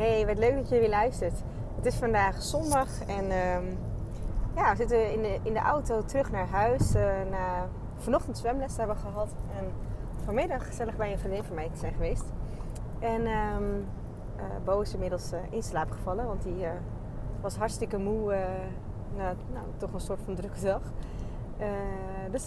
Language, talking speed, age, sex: Dutch, 180 wpm, 20-39, female